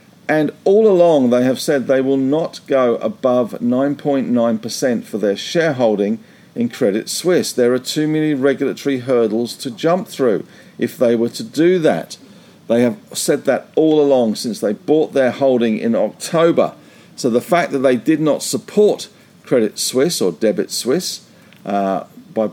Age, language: 50-69, English